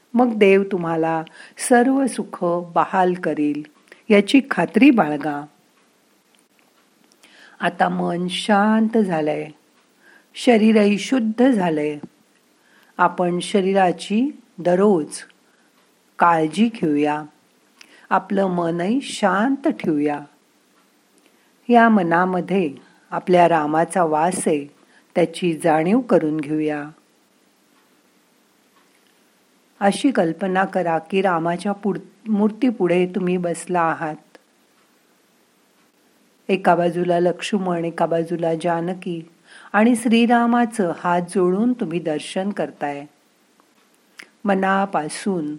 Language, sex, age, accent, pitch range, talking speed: Marathi, female, 50-69, native, 165-220 Hz, 80 wpm